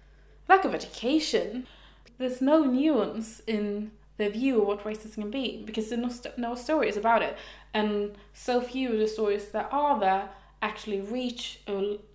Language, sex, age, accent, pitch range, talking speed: English, female, 20-39, British, 200-230 Hz, 175 wpm